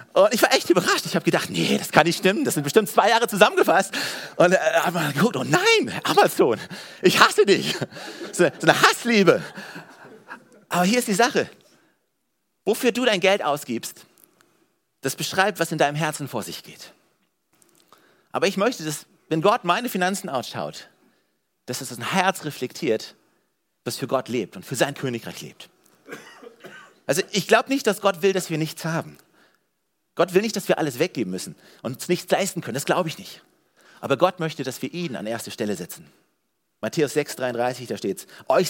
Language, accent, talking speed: German, German, 185 wpm